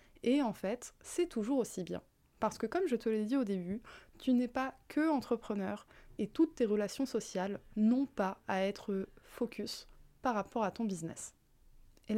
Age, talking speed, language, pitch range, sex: 20-39, 180 wpm, French, 195-245 Hz, female